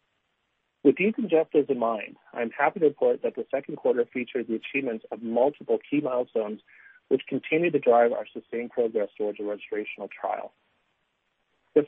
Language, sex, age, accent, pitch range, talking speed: English, male, 40-59, American, 110-150 Hz, 160 wpm